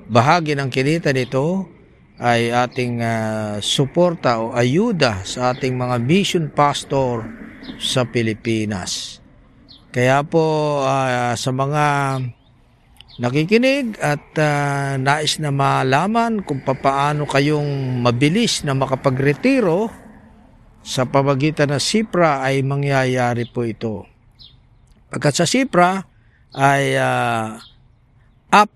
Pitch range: 120-150 Hz